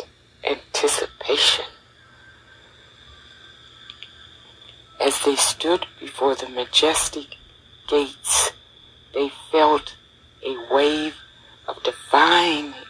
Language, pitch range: English, 130-170 Hz